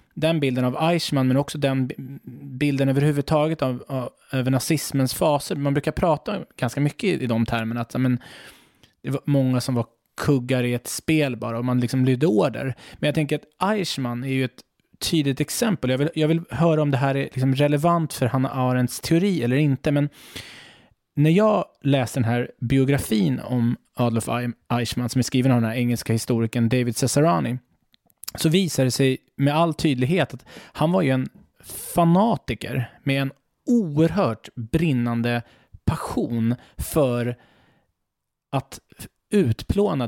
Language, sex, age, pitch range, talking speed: English, male, 20-39, 125-155 Hz, 160 wpm